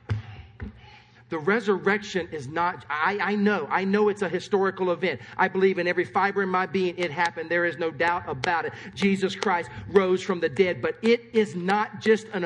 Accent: American